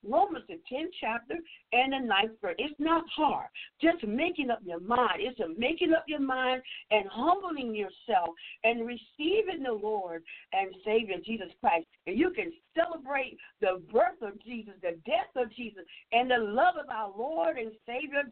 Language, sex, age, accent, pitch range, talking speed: English, female, 60-79, American, 205-315 Hz, 175 wpm